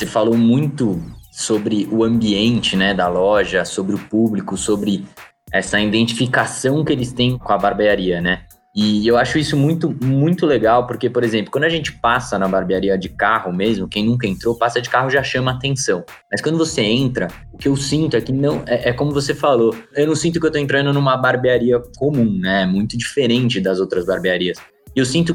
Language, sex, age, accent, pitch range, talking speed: Portuguese, male, 20-39, Brazilian, 105-145 Hz, 205 wpm